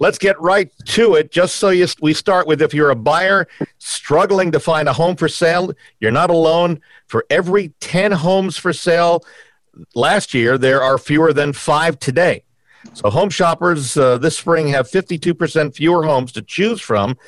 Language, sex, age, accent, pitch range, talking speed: English, male, 50-69, American, 125-170 Hz, 175 wpm